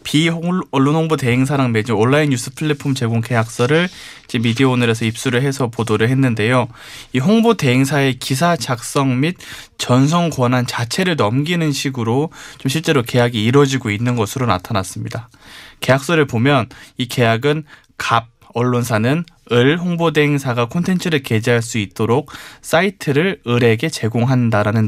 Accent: native